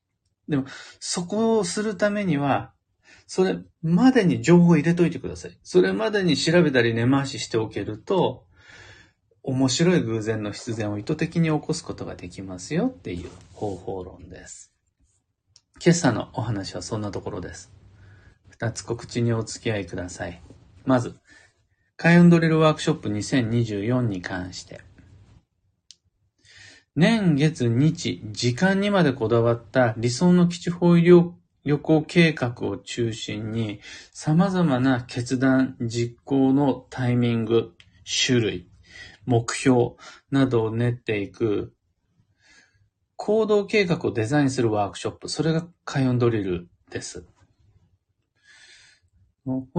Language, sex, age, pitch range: Japanese, male, 40-59, 100-155 Hz